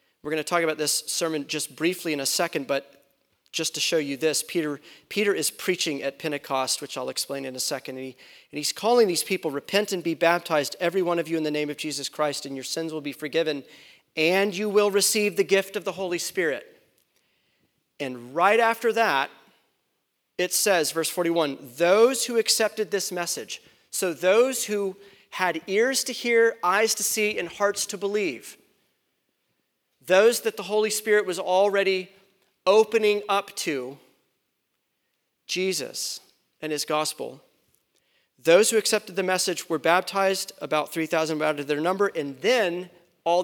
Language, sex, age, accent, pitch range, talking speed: English, male, 40-59, American, 150-200 Hz, 170 wpm